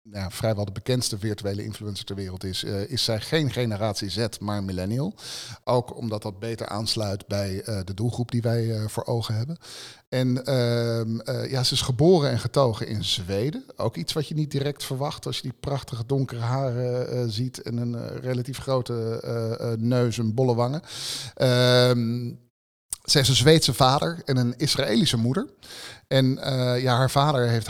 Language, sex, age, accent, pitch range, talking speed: Dutch, male, 50-69, Dutch, 105-130 Hz, 185 wpm